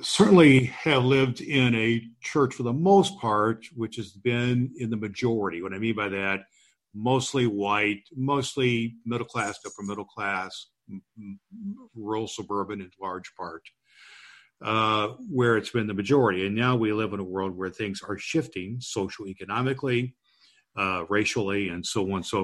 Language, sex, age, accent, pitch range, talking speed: English, male, 50-69, American, 95-120 Hz, 160 wpm